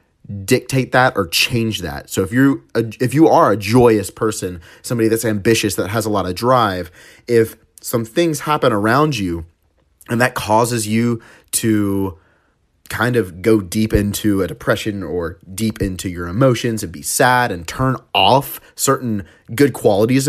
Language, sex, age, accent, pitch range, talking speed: English, male, 30-49, American, 95-120 Hz, 160 wpm